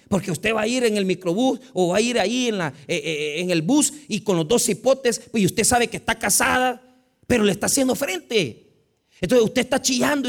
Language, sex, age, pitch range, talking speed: Spanish, male, 40-59, 190-275 Hz, 240 wpm